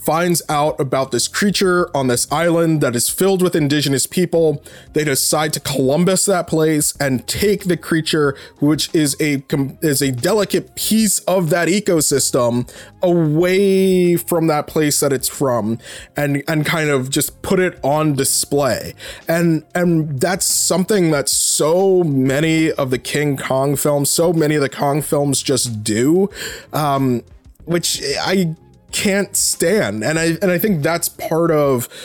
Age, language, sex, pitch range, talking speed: 20-39, English, male, 135-170 Hz, 155 wpm